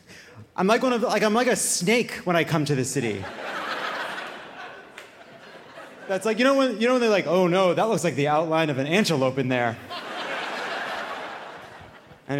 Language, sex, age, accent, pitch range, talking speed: English, male, 30-49, American, 140-235 Hz, 190 wpm